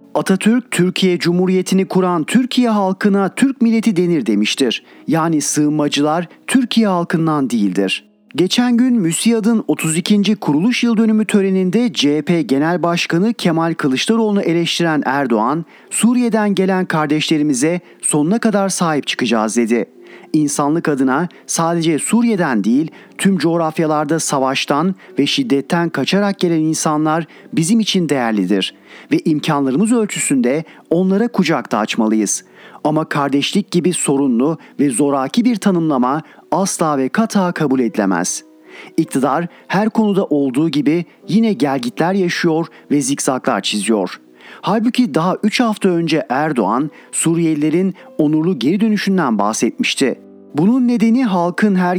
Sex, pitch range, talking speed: male, 145-195 Hz, 115 wpm